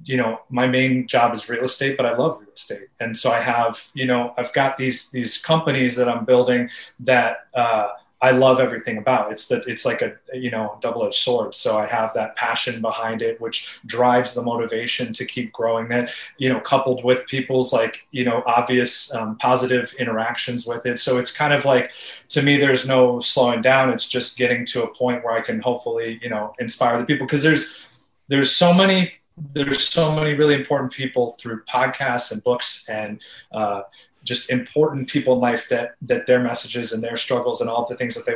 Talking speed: 205 wpm